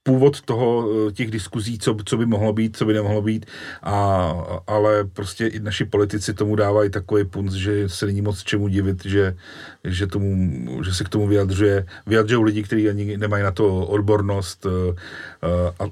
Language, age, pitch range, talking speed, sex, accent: Czech, 40-59, 95-105 Hz, 175 wpm, male, native